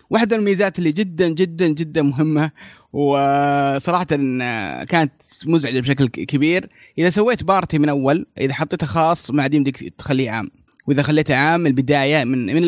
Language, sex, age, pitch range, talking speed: Arabic, male, 20-39, 140-180 Hz, 135 wpm